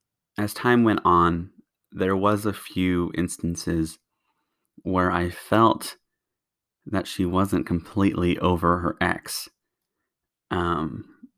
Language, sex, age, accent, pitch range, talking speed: English, male, 30-49, American, 85-95 Hz, 105 wpm